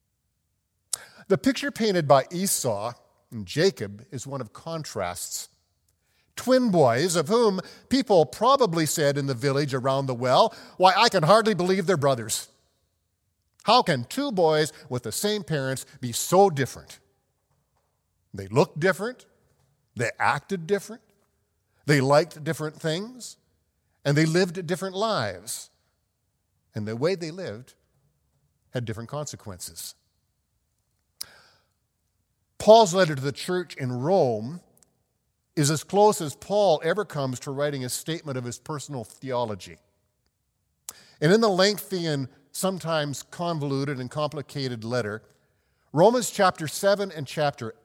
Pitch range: 120-185 Hz